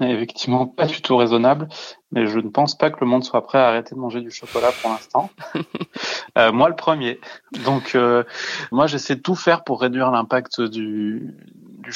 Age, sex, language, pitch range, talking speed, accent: 20-39, male, French, 115-135 Hz, 190 wpm, French